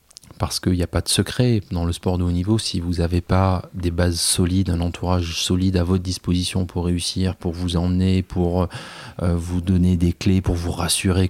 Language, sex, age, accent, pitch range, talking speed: French, male, 30-49, French, 85-105 Hz, 210 wpm